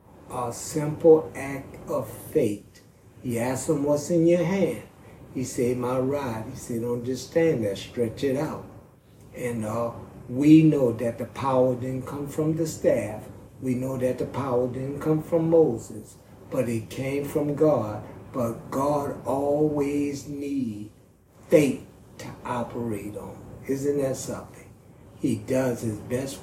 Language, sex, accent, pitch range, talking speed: English, male, American, 115-145 Hz, 150 wpm